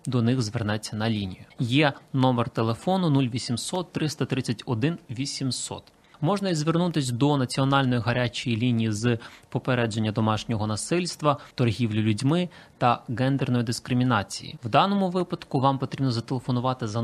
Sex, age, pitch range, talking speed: male, 20-39, 115-150 Hz, 120 wpm